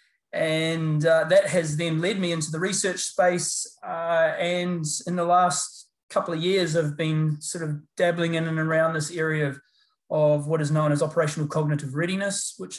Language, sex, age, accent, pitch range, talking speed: English, male, 20-39, Australian, 155-180 Hz, 185 wpm